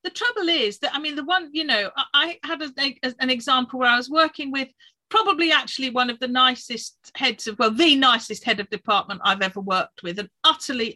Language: English